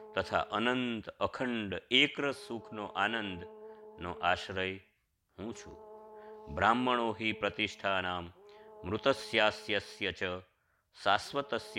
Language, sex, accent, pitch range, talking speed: Gujarati, male, native, 100-140 Hz, 75 wpm